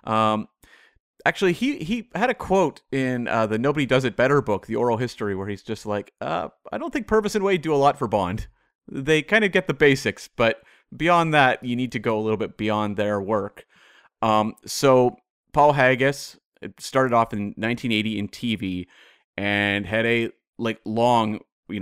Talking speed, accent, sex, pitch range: 190 wpm, American, male, 105-125 Hz